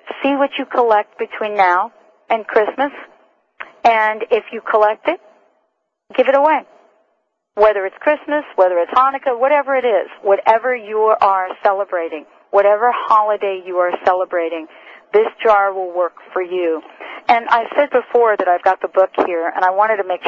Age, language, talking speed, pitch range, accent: 50-69, English, 165 wpm, 180-230 Hz, American